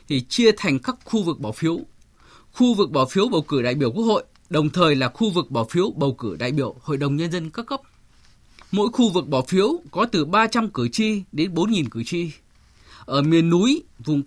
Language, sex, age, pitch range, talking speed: Vietnamese, male, 20-39, 145-215 Hz, 225 wpm